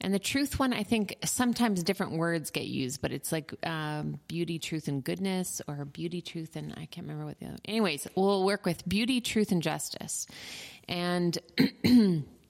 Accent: American